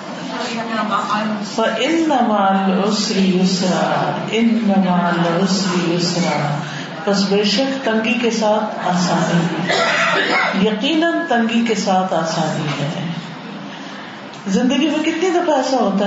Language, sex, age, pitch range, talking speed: Urdu, female, 50-69, 190-230 Hz, 75 wpm